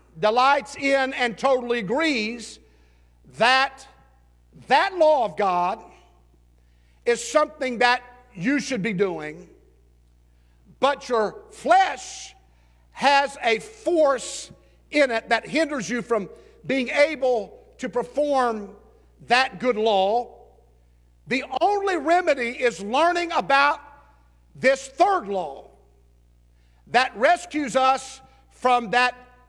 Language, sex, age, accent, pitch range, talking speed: English, male, 50-69, American, 175-280 Hz, 100 wpm